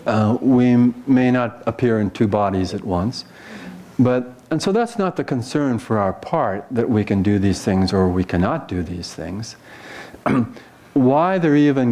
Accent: American